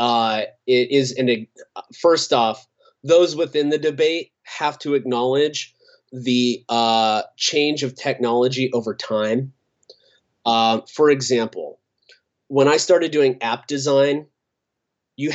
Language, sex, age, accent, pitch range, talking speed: English, male, 30-49, American, 115-145 Hz, 120 wpm